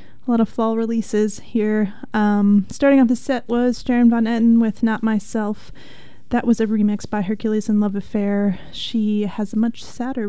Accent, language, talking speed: American, English, 185 wpm